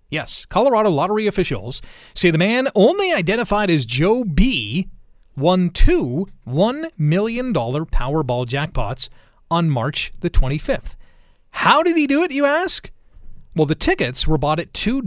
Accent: American